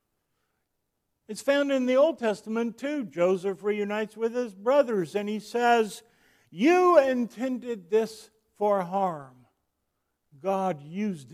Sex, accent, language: male, American, English